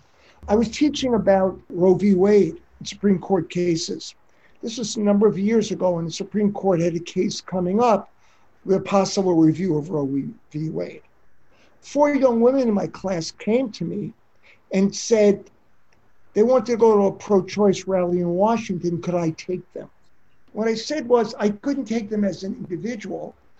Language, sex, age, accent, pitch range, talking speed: English, male, 60-79, American, 185-230 Hz, 180 wpm